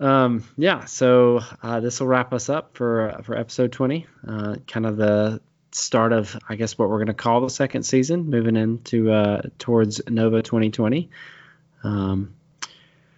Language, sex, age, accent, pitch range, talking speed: English, male, 20-39, American, 105-130 Hz, 175 wpm